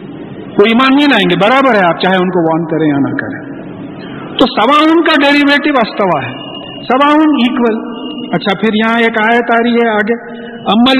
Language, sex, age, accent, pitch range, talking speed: English, male, 60-79, Indian, 215-270 Hz, 175 wpm